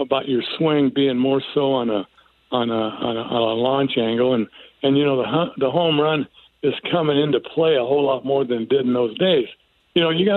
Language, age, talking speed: English, 60-79, 245 wpm